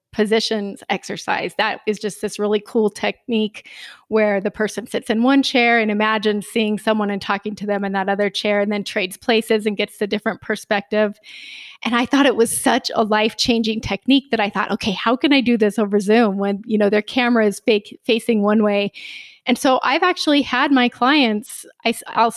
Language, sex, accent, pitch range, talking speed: English, female, American, 210-235 Hz, 205 wpm